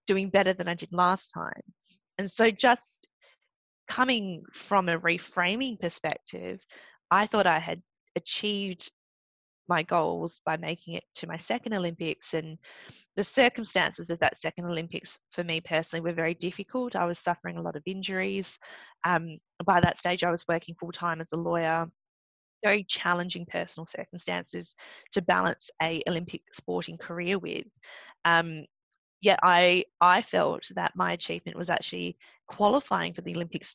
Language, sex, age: English, female, 20-39